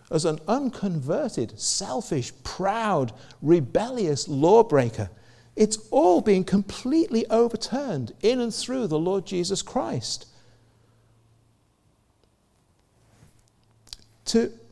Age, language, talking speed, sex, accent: 50-69, English, 80 wpm, male, British